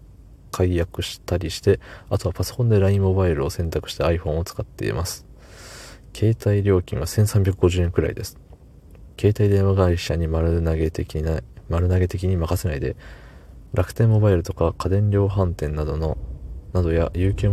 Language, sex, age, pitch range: Japanese, male, 20-39, 85-100 Hz